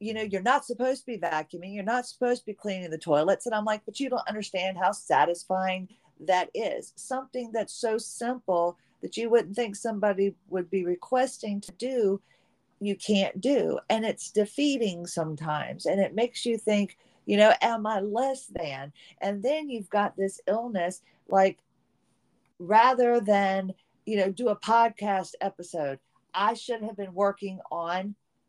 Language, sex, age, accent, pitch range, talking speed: English, female, 50-69, American, 190-235 Hz, 170 wpm